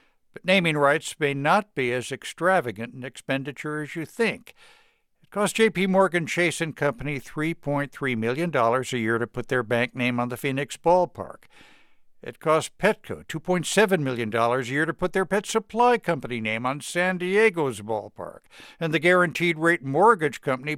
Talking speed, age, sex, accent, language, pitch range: 165 wpm, 60-79, male, American, English, 120-165 Hz